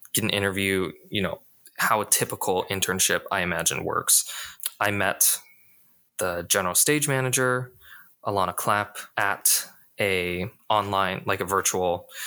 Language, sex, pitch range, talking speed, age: English, male, 90-110 Hz, 120 wpm, 20-39